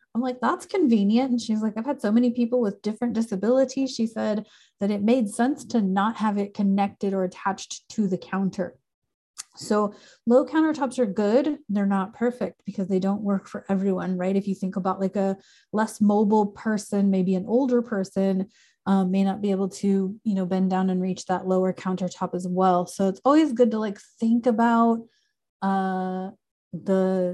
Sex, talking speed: female, 190 wpm